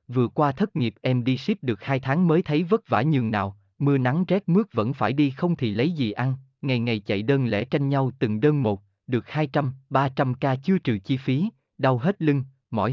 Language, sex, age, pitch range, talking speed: Vietnamese, male, 20-39, 115-150 Hz, 225 wpm